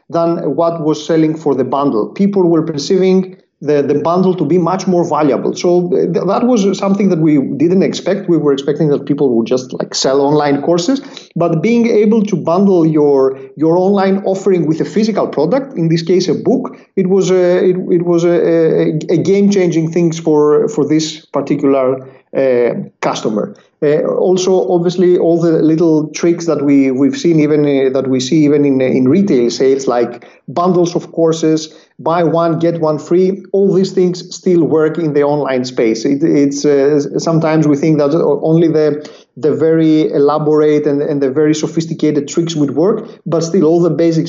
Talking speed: 185 wpm